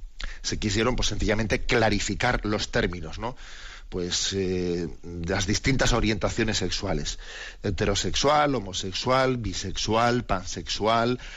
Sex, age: male, 40-59